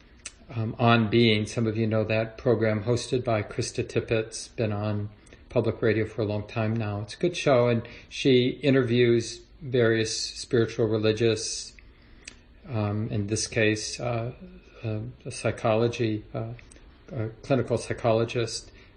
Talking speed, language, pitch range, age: 140 wpm, English, 110-120 Hz, 40-59